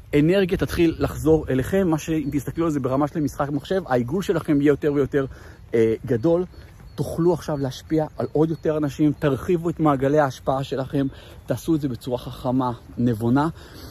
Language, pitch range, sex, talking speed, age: Hebrew, 120-145 Hz, male, 165 wpm, 50-69